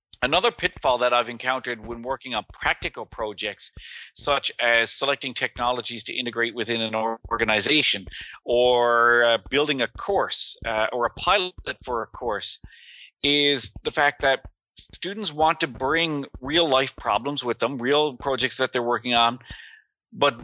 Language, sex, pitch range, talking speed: English, male, 115-140 Hz, 145 wpm